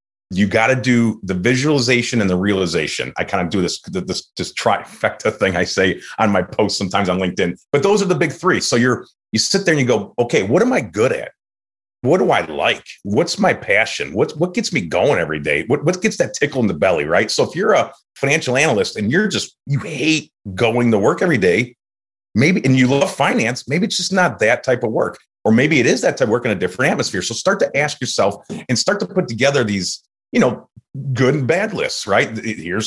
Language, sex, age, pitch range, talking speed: English, male, 30-49, 105-150 Hz, 235 wpm